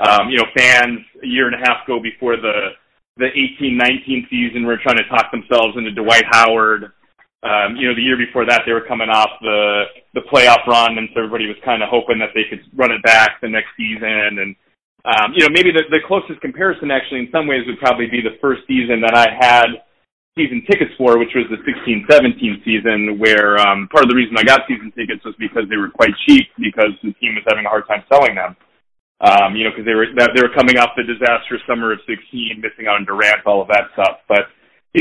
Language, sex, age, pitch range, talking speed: English, male, 30-49, 110-145 Hz, 235 wpm